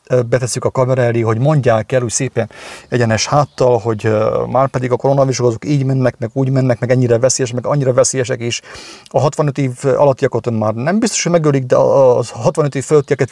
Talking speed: 185 wpm